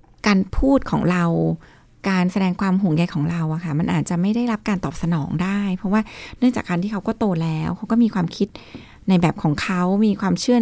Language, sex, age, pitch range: Thai, female, 20-39, 170-220 Hz